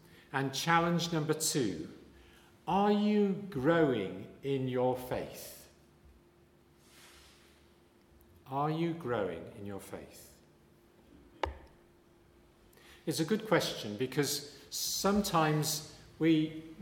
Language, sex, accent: English, male, British